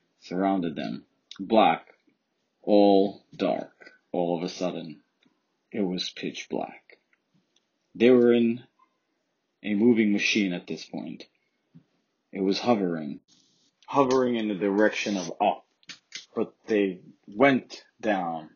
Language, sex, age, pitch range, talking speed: English, male, 30-49, 90-105 Hz, 115 wpm